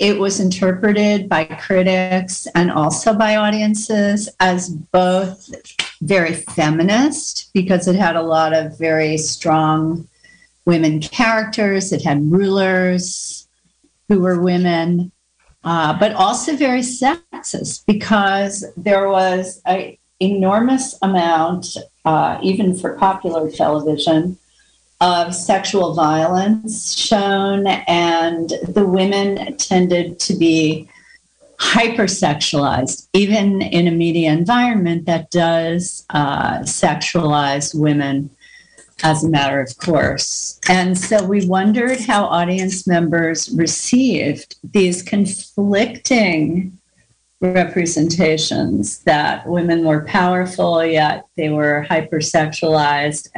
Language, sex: English, female